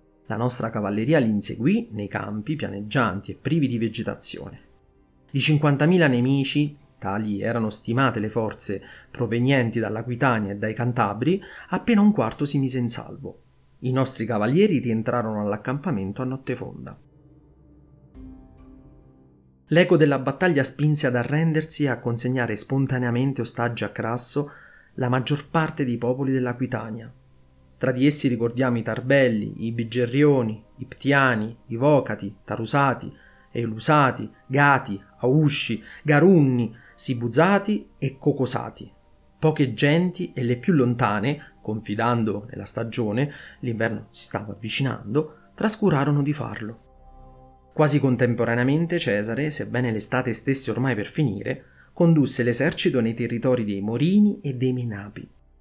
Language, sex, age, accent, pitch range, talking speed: Italian, male, 30-49, native, 110-145 Hz, 120 wpm